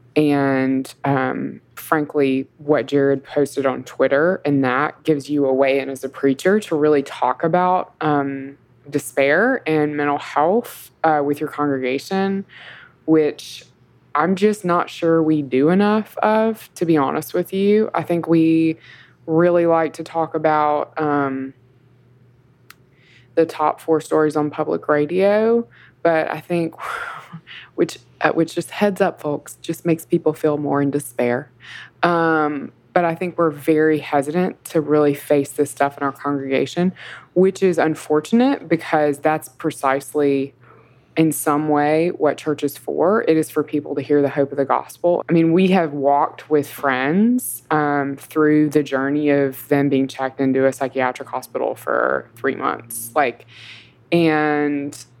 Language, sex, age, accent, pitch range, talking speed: English, female, 20-39, American, 135-165 Hz, 150 wpm